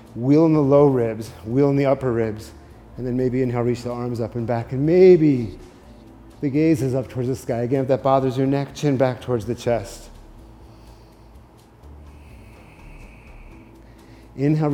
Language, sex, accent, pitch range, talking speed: English, male, American, 110-135 Hz, 165 wpm